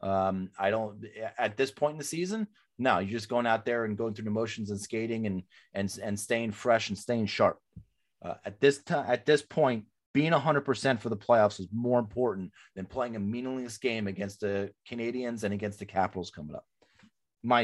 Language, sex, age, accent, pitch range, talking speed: English, male, 30-49, American, 105-130 Hz, 210 wpm